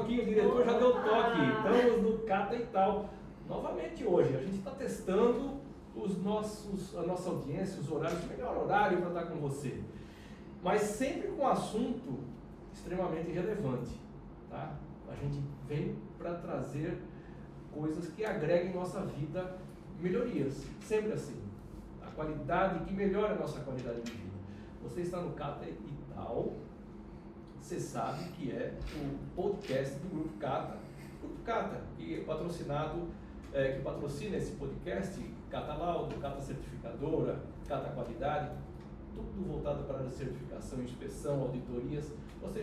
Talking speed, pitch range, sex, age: 130 wpm, 145-200 Hz, male, 60-79